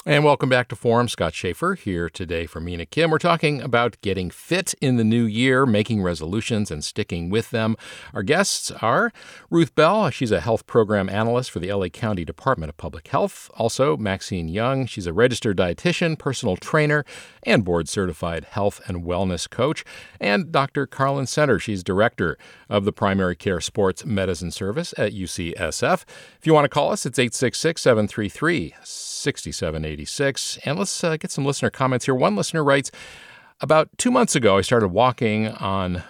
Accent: American